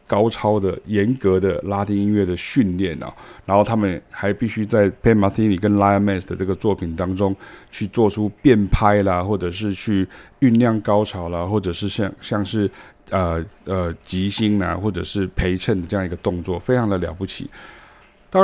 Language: Chinese